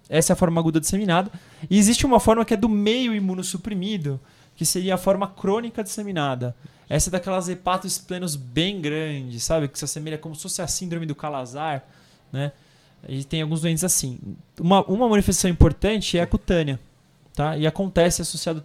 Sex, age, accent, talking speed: male, 20-39, Brazilian, 185 wpm